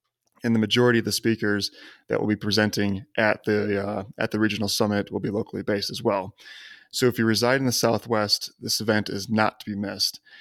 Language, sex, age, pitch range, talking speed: English, male, 20-39, 105-120 Hz, 215 wpm